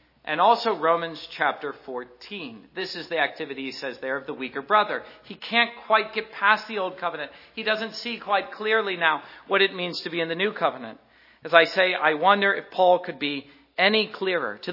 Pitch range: 160-210 Hz